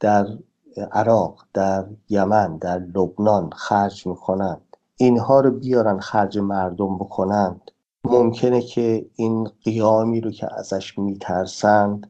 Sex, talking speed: male, 120 wpm